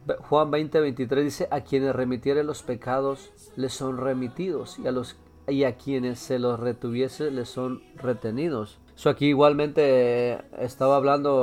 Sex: male